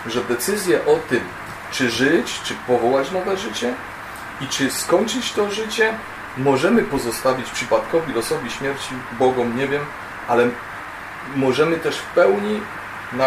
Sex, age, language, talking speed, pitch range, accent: male, 30-49, Polish, 125 wpm, 135-175 Hz, native